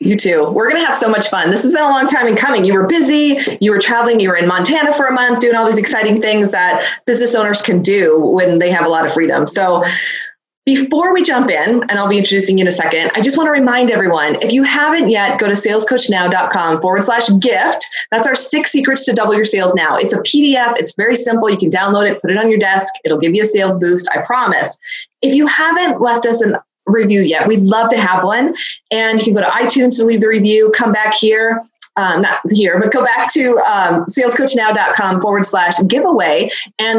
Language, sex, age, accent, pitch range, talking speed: English, female, 20-39, American, 195-255 Hz, 240 wpm